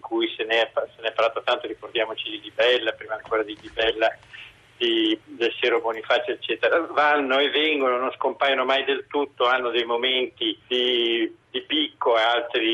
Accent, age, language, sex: native, 50-69, Italian, male